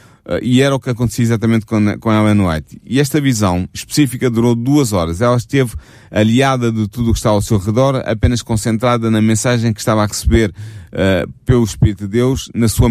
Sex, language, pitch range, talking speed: male, Portuguese, 105-130 Hz, 205 wpm